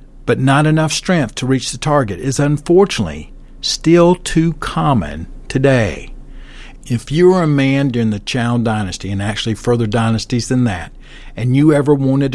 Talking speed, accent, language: 160 wpm, American, English